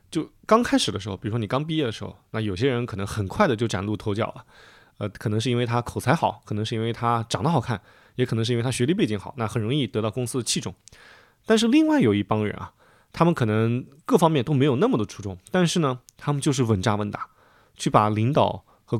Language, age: Chinese, 20-39